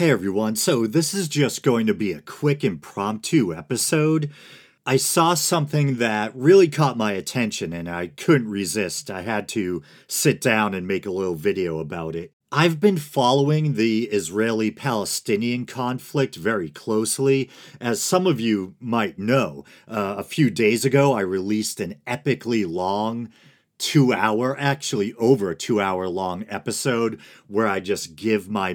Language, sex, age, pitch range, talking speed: English, male, 40-59, 100-145 Hz, 150 wpm